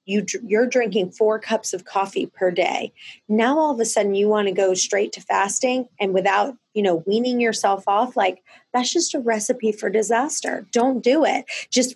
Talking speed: 190 wpm